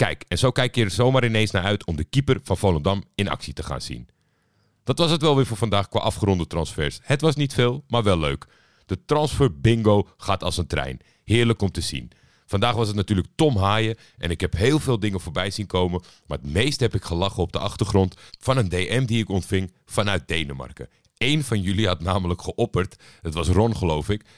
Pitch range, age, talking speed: 90-110 Hz, 50-69, 225 wpm